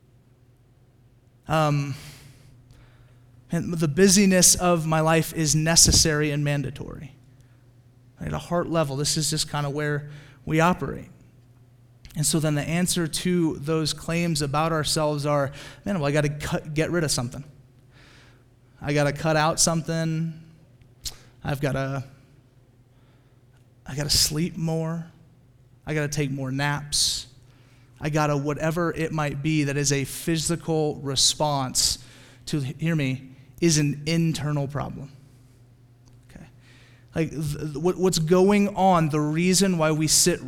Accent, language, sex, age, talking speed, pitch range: American, English, male, 30-49, 140 wpm, 125-165 Hz